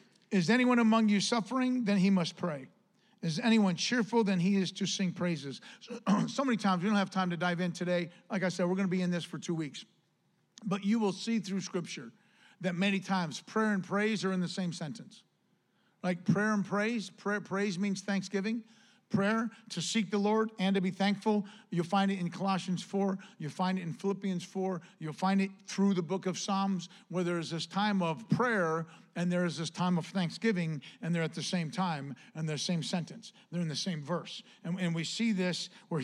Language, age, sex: English, 50-69, male